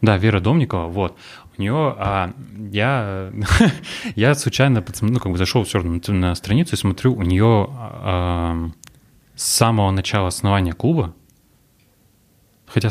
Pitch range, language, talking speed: 95-110 Hz, Russian, 150 wpm